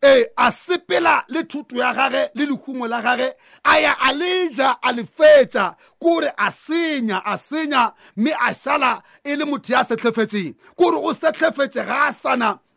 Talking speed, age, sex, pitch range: 95 wpm, 40-59, male, 235-300 Hz